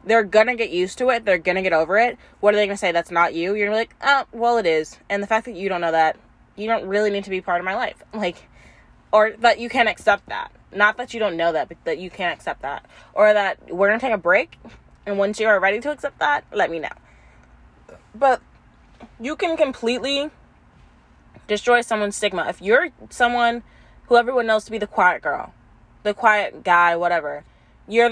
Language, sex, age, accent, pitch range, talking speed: English, female, 20-39, American, 185-250 Hz, 235 wpm